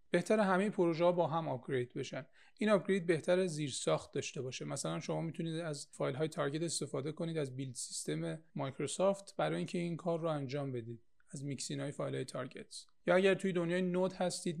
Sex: male